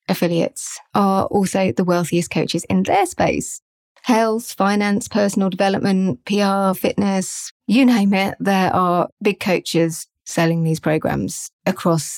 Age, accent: 30-49, British